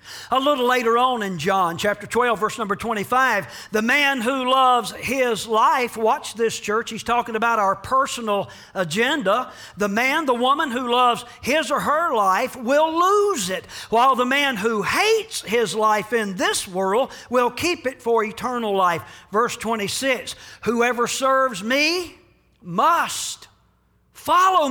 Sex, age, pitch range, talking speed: male, 40-59, 220-305 Hz, 150 wpm